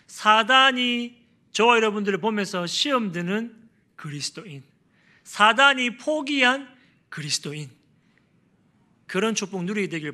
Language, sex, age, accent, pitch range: Korean, male, 40-59, native, 150-210 Hz